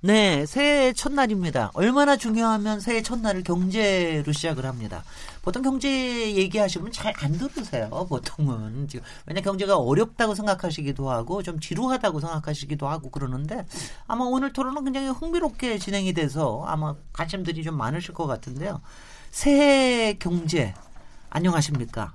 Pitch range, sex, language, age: 145-220 Hz, male, Korean, 40-59